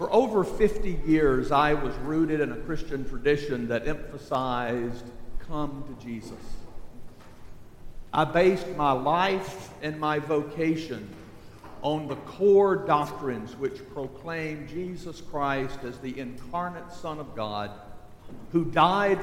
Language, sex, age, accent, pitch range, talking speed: English, male, 50-69, American, 120-160 Hz, 120 wpm